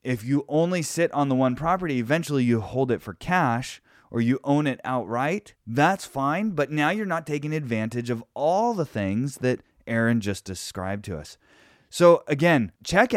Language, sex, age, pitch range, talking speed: English, male, 20-39, 115-150 Hz, 180 wpm